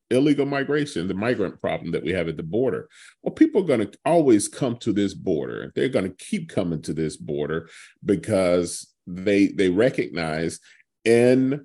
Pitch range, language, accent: 95-125 Hz, English, American